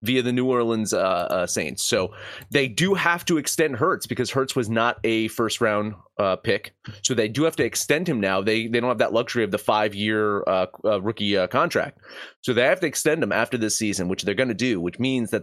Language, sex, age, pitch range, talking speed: English, male, 30-49, 100-125 Hz, 235 wpm